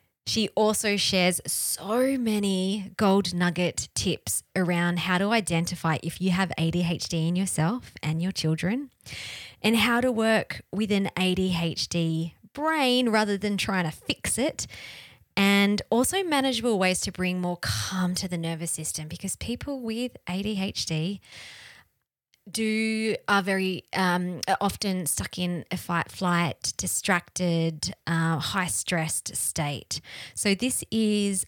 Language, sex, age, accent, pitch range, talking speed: English, female, 20-39, Australian, 170-210 Hz, 130 wpm